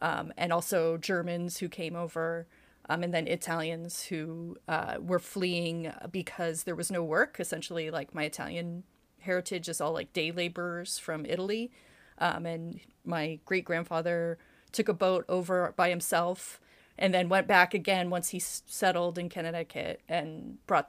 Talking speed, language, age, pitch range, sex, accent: 160 wpm, English, 30-49, 165-205 Hz, female, American